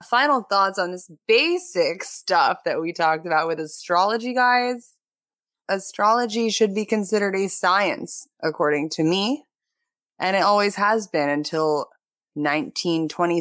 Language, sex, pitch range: English, female, 155-195 Hz